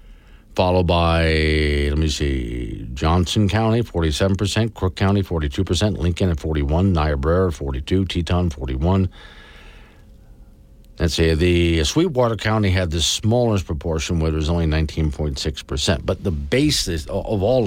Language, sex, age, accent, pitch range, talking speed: English, male, 50-69, American, 80-110 Hz, 130 wpm